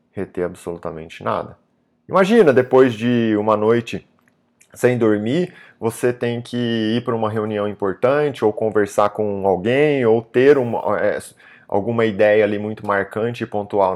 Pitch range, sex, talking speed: 105-145 Hz, male, 135 wpm